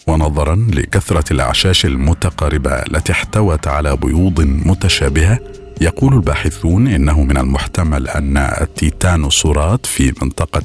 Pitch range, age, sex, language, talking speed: 70-95 Hz, 50-69, male, Arabic, 100 wpm